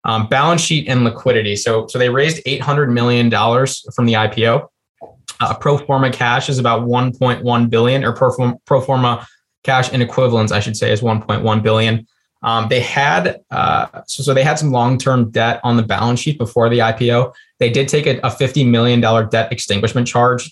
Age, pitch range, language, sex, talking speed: 20-39, 115-130 Hz, English, male, 210 wpm